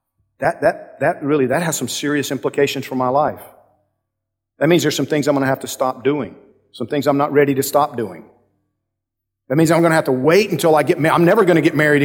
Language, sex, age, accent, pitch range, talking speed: English, male, 50-69, American, 125-175 Hz, 250 wpm